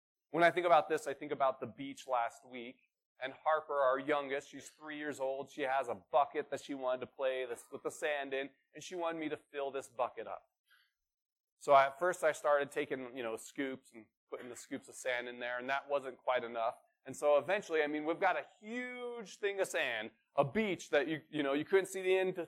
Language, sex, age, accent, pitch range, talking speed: English, male, 30-49, American, 140-185 Hz, 235 wpm